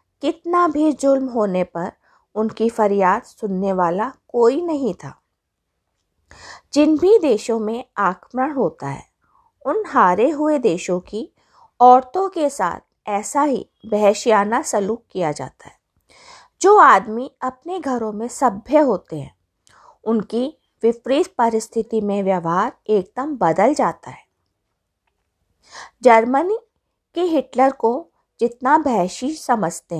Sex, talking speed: female, 120 wpm